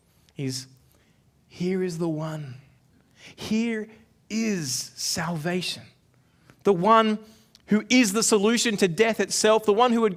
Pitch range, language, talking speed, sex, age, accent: 175-225 Hz, English, 125 wpm, male, 30-49, Australian